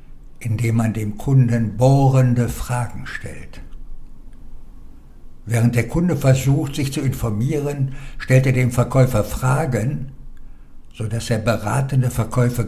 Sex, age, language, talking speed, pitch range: male, 60-79, German, 110 wpm, 100-130 Hz